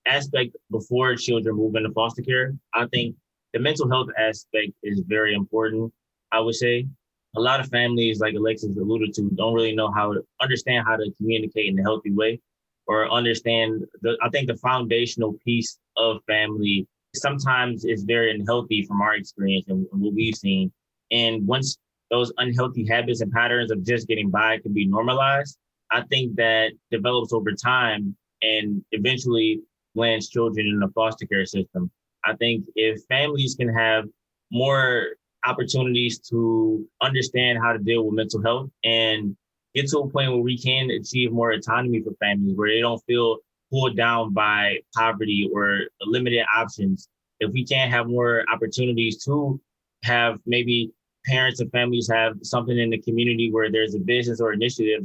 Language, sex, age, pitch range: English, male, 20-39, 110-120 Hz